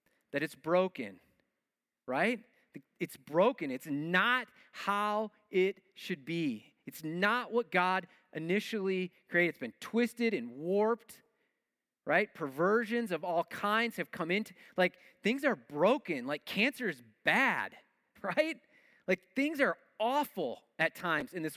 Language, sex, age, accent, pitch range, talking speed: English, male, 30-49, American, 170-225 Hz, 135 wpm